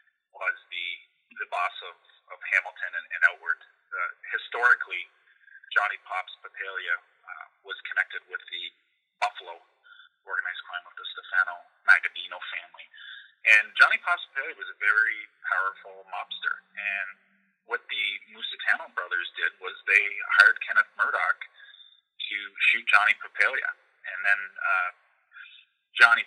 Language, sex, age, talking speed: English, male, 30-49, 130 wpm